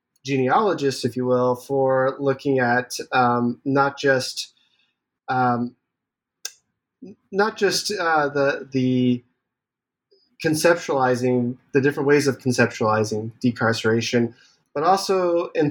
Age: 20-39